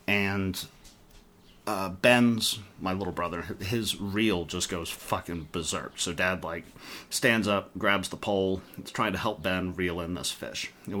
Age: 30-49